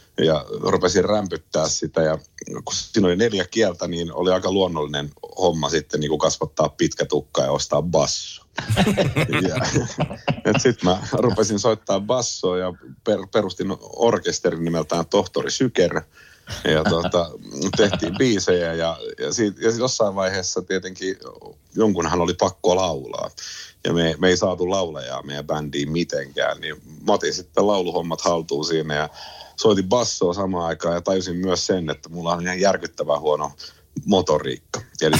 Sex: male